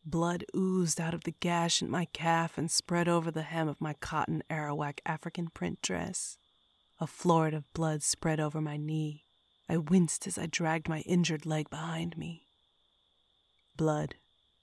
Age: 30-49